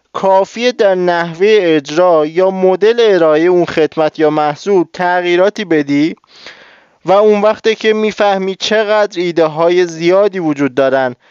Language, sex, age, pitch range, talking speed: Persian, male, 20-39, 155-195 Hz, 125 wpm